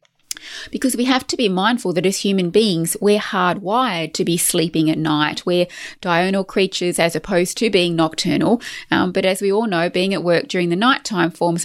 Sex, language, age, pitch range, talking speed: female, English, 20-39, 155-195 Hz, 195 wpm